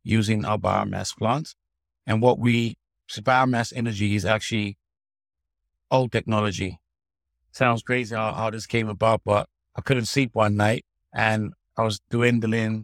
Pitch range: 100-115 Hz